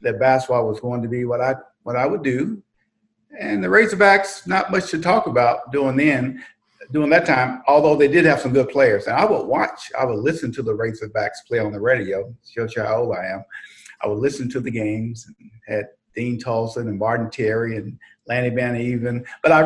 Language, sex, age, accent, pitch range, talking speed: English, male, 50-69, American, 115-145 Hz, 215 wpm